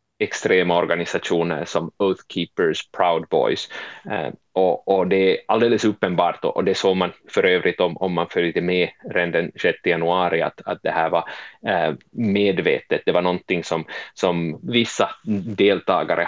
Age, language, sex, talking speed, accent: 30-49, Swedish, male, 150 wpm, Finnish